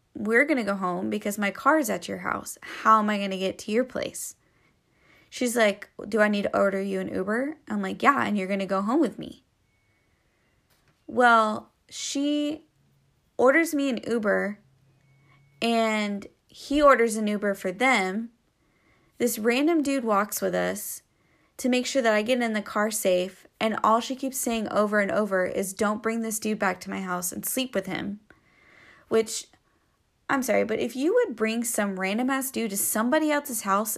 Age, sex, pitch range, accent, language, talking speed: 20-39, female, 195-245 Hz, American, English, 190 wpm